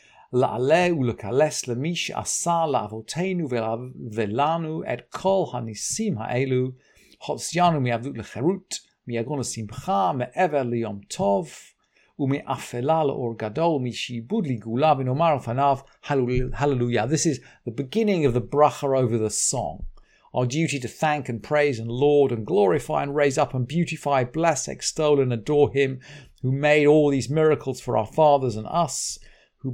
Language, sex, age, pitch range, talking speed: English, male, 50-69, 125-160 Hz, 155 wpm